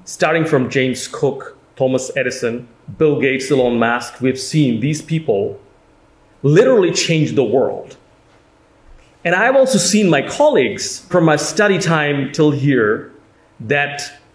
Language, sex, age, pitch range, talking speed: English, male, 30-49, 130-175 Hz, 130 wpm